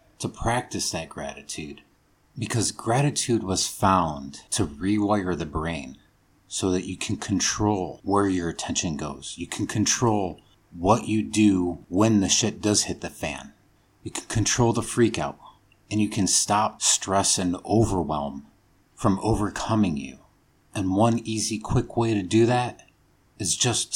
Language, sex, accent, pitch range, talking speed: English, male, American, 85-105 Hz, 150 wpm